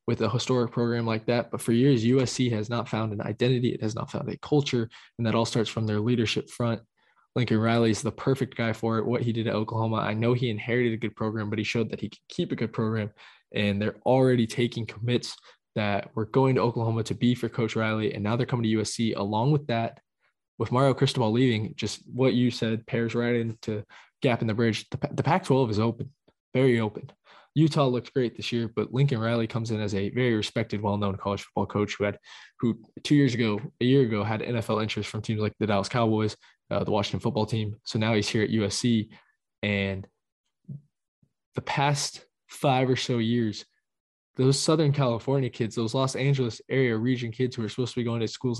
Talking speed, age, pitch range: 215 wpm, 20-39, 110-125 Hz